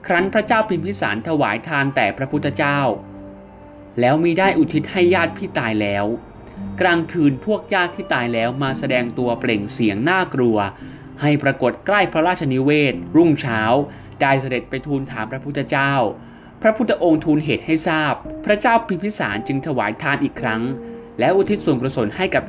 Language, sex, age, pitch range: Thai, male, 20-39, 110-155 Hz